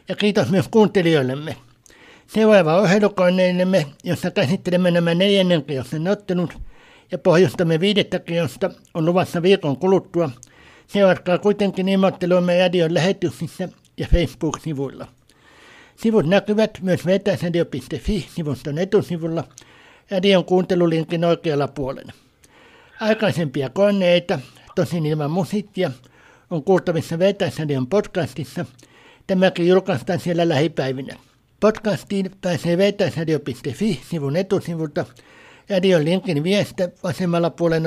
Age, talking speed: 60-79, 95 wpm